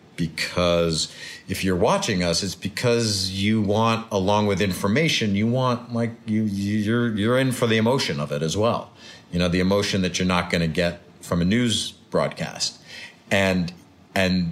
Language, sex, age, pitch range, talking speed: English, male, 40-59, 85-110 Hz, 175 wpm